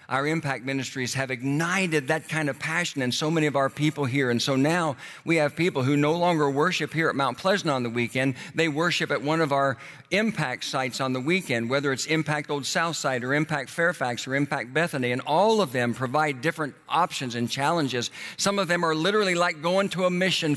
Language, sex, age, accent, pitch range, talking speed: English, male, 60-79, American, 125-175 Hz, 215 wpm